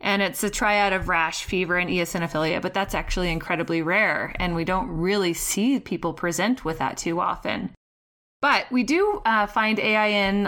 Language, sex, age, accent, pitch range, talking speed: English, female, 20-39, American, 170-215 Hz, 180 wpm